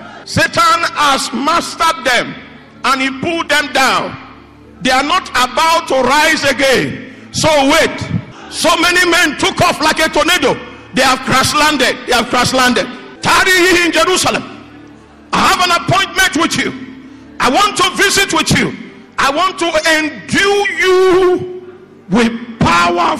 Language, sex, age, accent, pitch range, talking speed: English, male, 50-69, Nigerian, 265-335 Hz, 145 wpm